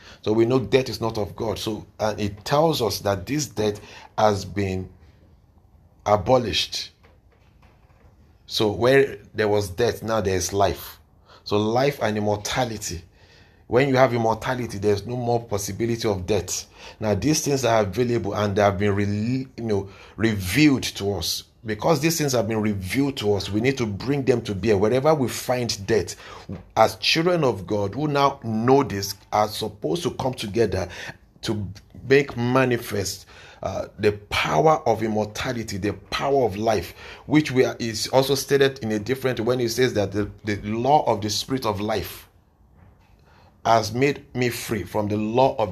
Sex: male